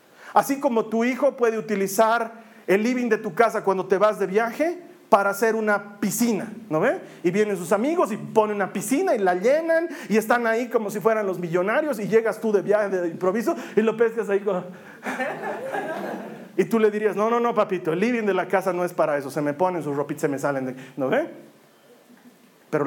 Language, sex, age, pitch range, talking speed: Spanish, male, 40-59, 155-230 Hz, 220 wpm